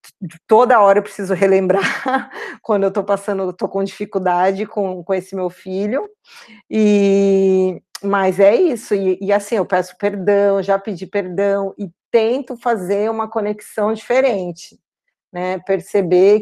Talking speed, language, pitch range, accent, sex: 145 wpm, Portuguese, 190-225 Hz, Brazilian, female